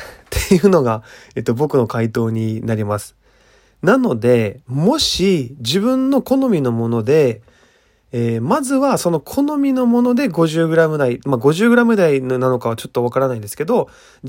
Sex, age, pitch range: male, 20-39, 115-185 Hz